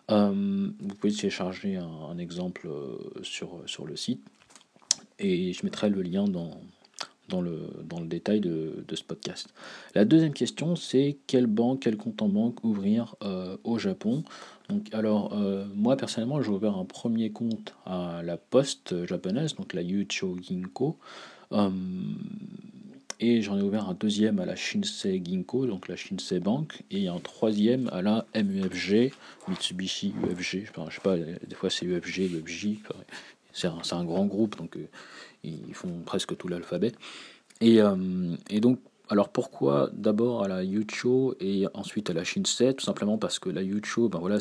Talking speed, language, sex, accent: 175 wpm, French, male, French